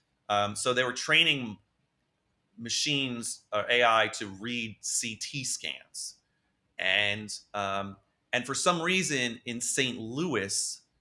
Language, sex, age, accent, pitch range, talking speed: English, male, 30-49, American, 110-145 Hz, 115 wpm